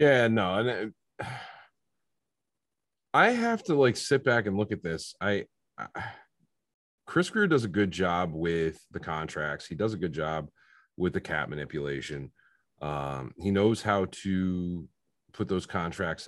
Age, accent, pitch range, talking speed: 30-49, American, 90-120 Hz, 145 wpm